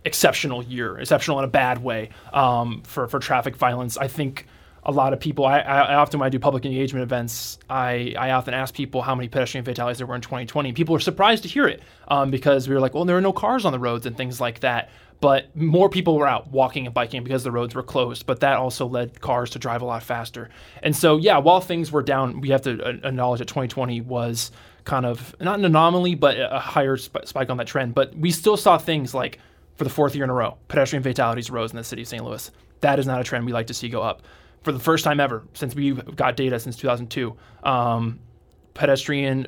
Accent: American